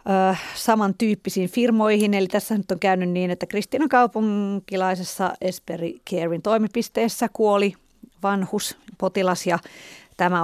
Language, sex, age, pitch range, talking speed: Finnish, female, 30-49, 185-210 Hz, 110 wpm